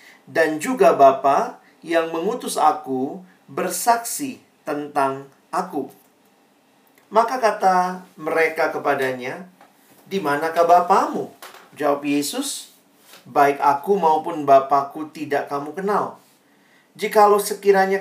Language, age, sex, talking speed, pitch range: Indonesian, 40-59, male, 90 wpm, 145-185 Hz